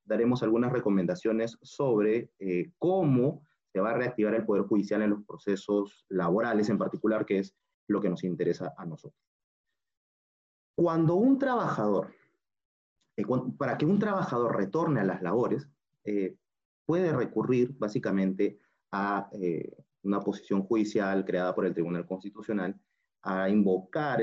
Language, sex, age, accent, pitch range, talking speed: Spanish, male, 30-49, Venezuelan, 100-130 Hz, 140 wpm